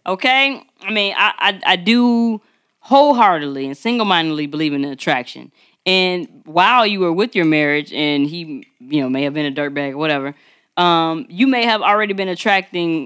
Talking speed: 180 wpm